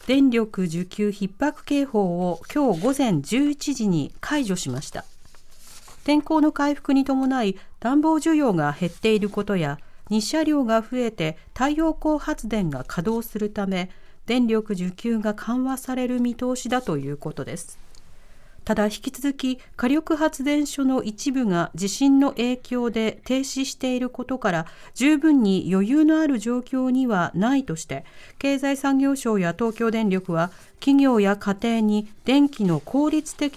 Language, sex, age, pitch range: Japanese, female, 40-59, 195-270 Hz